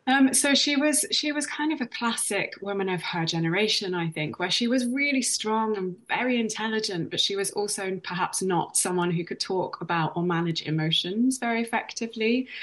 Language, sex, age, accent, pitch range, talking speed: English, female, 20-39, British, 165-205 Hz, 190 wpm